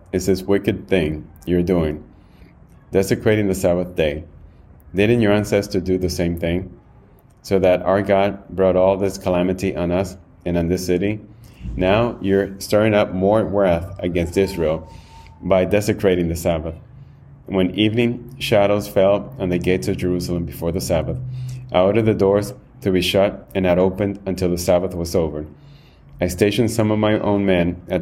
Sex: male